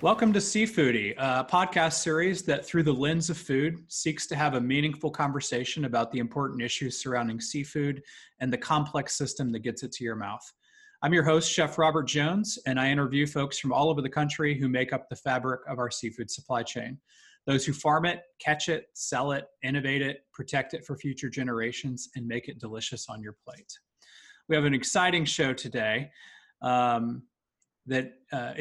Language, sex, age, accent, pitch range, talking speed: English, male, 20-39, American, 130-160 Hz, 185 wpm